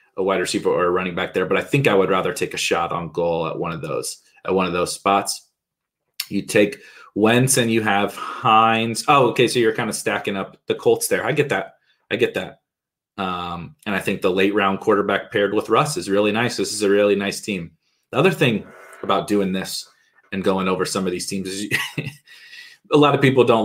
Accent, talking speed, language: American, 230 wpm, English